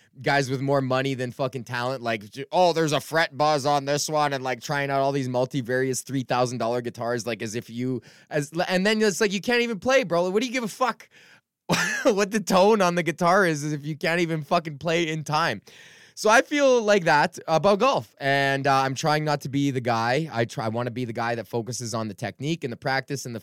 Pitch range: 130-185 Hz